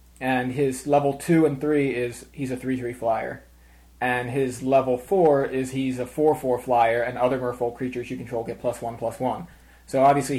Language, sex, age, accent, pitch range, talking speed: English, male, 20-39, American, 120-135 Hz, 215 wpm